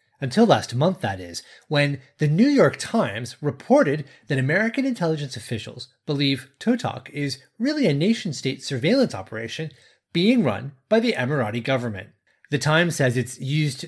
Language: English